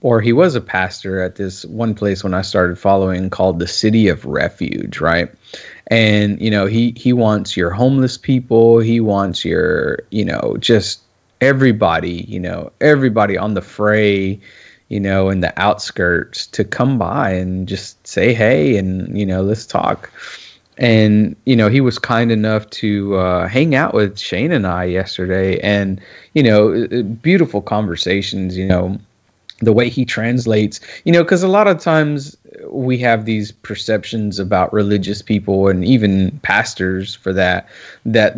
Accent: American